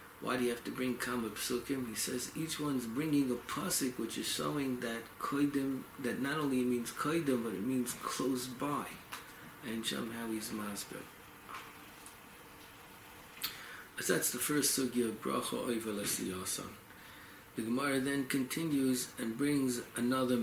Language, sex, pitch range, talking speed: English, male, 110-135 Hz, 140 wpm